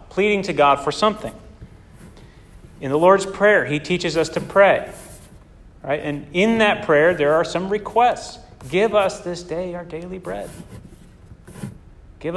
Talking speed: 150 wpm